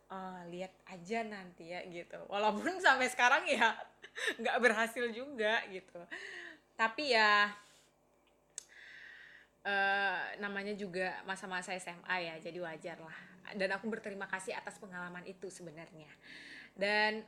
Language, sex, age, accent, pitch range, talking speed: Indonesian, female, 20-39, native, 185-225 Hz, 120 wpm